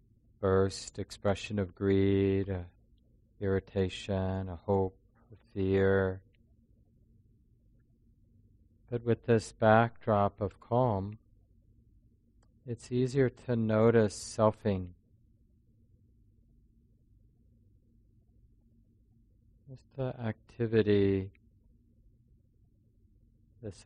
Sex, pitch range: male, 100-110 Hz